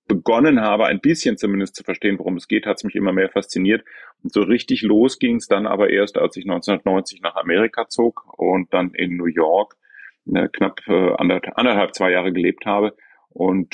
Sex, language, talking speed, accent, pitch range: male, German, 190 wpm, German, 95-115 Hz